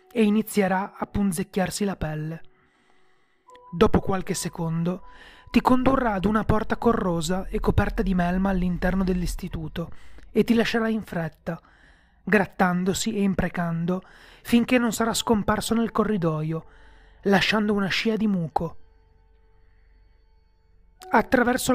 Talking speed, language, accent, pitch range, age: 115 wpm, Italian, native, 175-230 Hz, 30-49